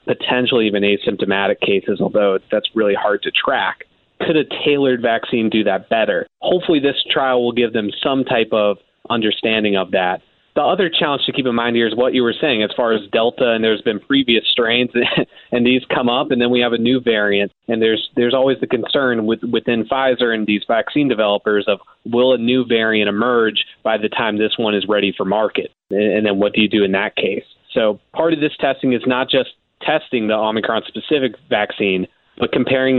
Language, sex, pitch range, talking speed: English, male, 105-130 Hz, 205 wpm